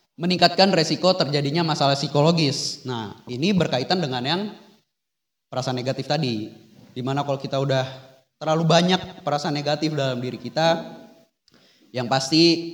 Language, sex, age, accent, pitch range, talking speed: Indonesian, male, 20-39, native, 130-170 Hz, 120 wpm